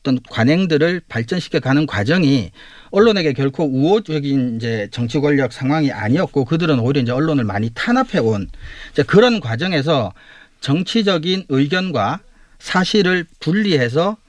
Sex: male